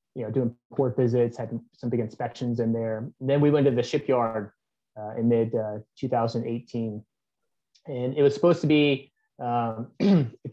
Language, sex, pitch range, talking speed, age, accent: English, male, 115-135 Hz, 165 wpm, 20-39, American